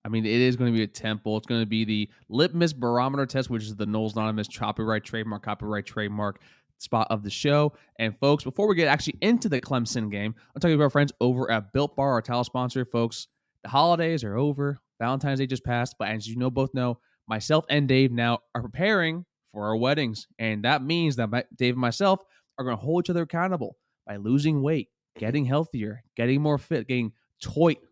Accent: American